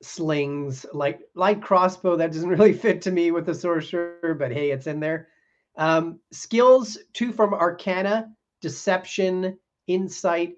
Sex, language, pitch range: male, English, 140-185 Hz